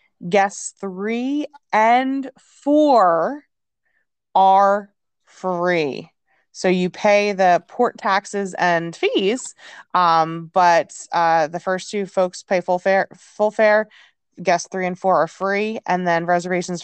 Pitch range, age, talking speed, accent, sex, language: 165-210 Hz, 20-39, 120 wpm, American, female, English